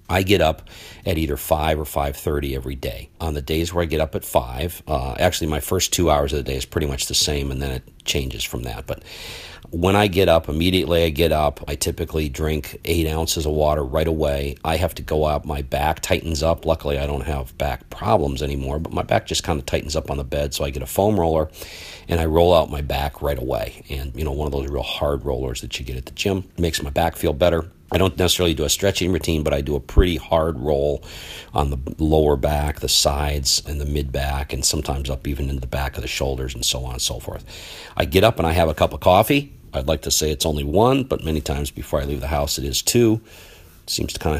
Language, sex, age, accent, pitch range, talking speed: English, male, 50-69, American, 70-85 Hz, 255 wpm